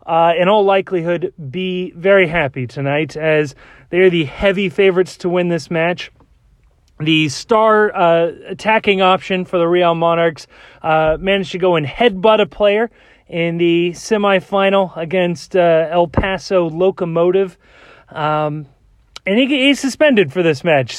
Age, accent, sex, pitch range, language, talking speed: 30-49, American, male, 165-210 Hz, English, 145 wpm